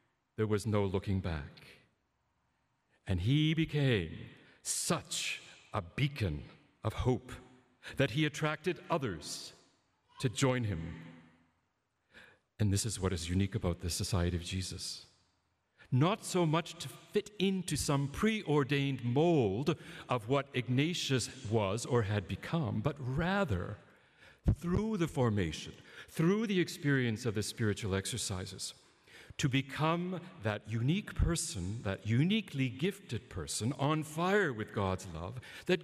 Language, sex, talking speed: English, male, 125 wpm